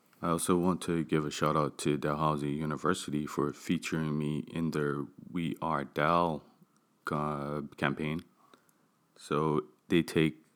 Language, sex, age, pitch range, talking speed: English, male, 30-49, 75-90 Hz, 125 wpm